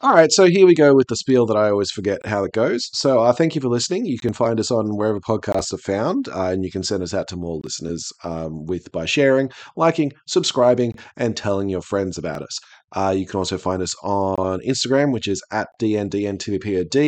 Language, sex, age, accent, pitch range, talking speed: English, male, 30-49, Australian, 95-125 Hz, 230 wpm